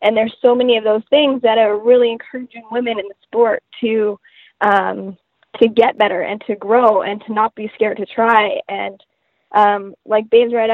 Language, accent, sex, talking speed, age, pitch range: English, American, female, 195 wpm, 10-29, 205-240 Hz